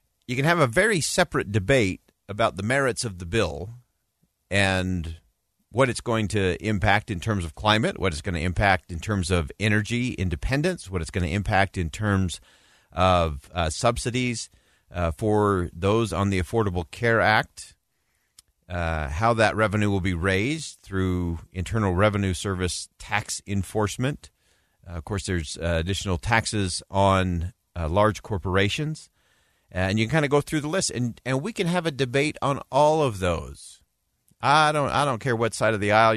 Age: 40-59